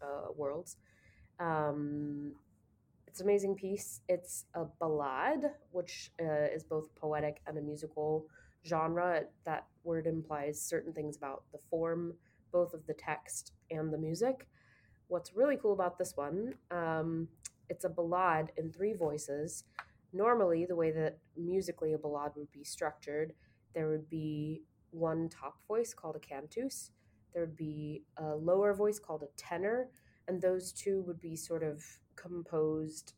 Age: 20-39